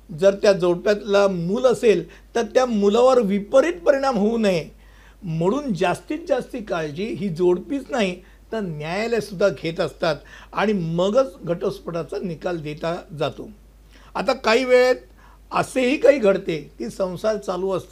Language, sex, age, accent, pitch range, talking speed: Hindi, male, 50-69, native, 180-225 Hz, 105 wpm